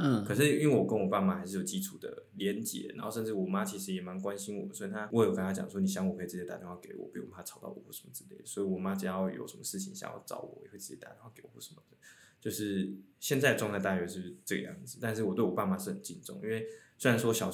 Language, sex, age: Chinese, male, 20-39